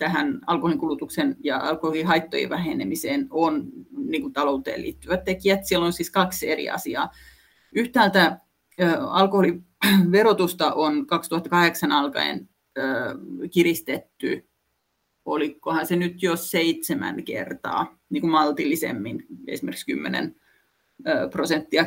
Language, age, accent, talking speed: Finnish, 30-49, native, 90 wpm